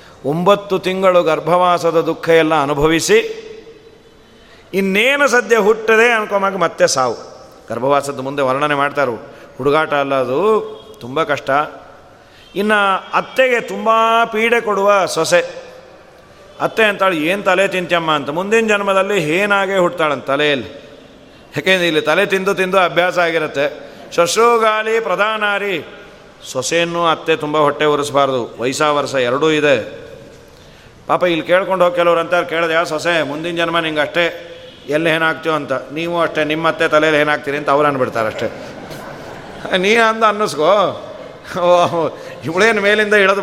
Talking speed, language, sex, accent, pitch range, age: 125 wpm, Kannada, male, native, 155-210 Hz, 40-59